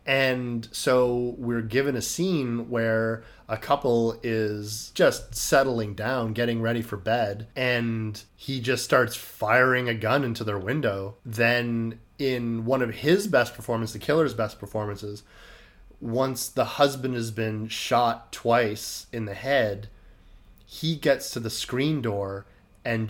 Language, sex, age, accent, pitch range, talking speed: English, male, 30-49, American, 110-145 Hz, 145 wpm